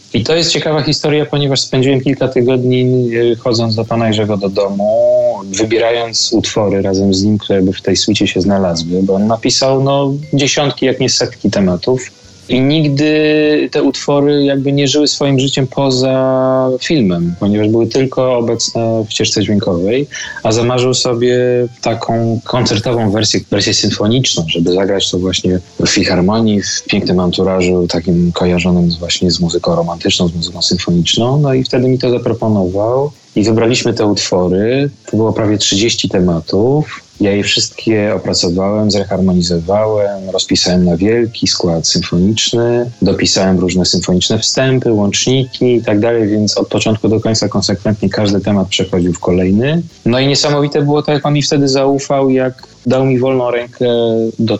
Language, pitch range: Polish, 95-130 Hz